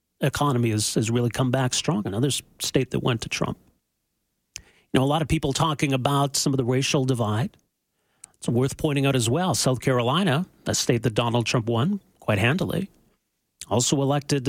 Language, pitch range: English, 125-155 Hz